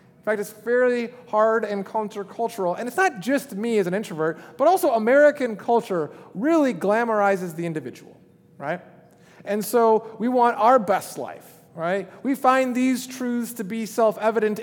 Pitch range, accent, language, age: 190-240 Hz, American, English, 30-49